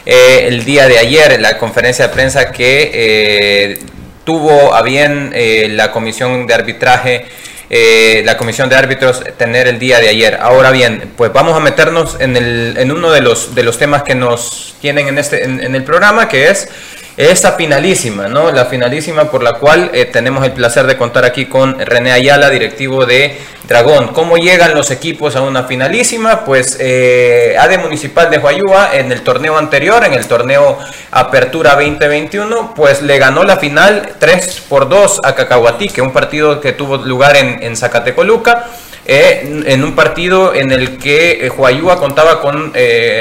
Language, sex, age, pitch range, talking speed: Spanish, male, 30-49, 125-160 Hz, 180 wpm